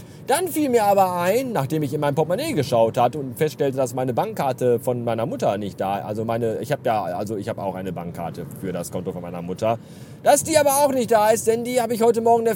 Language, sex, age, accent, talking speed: German, male, 40-59, German, 255 wpm